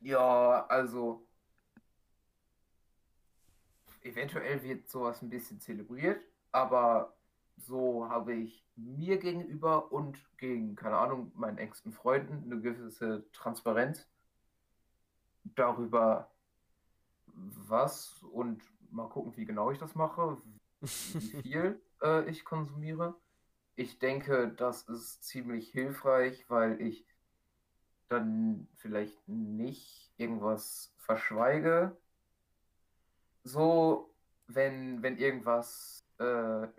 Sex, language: male, German